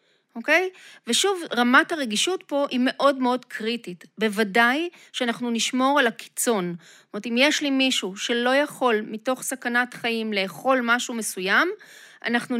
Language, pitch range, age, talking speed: Hebrew, 220-300 Hz, 30-49, 145 wpm